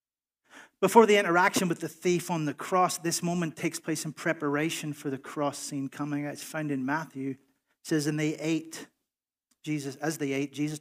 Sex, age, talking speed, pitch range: male, 40-59, 190 wpm, 135-155 Hz